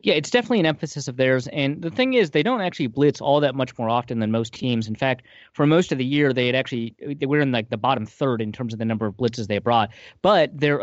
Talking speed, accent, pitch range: 285 wpm, American, 115-140 Hz